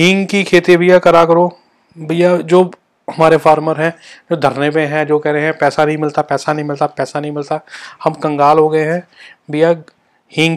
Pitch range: 150-175 Hz